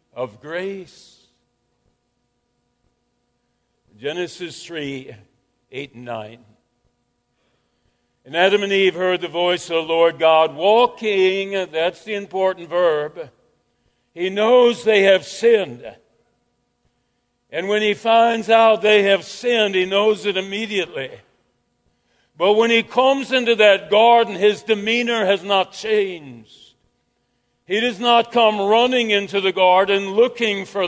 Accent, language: American, English